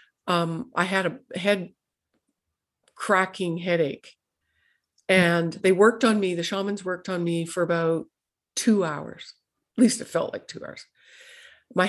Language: English